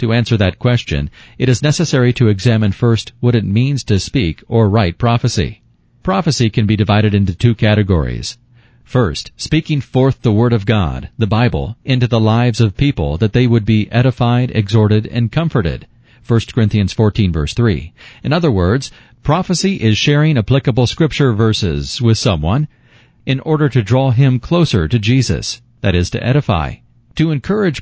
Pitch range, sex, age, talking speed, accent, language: 105-130 Hz, male, 40-59, 165 wpm, American, English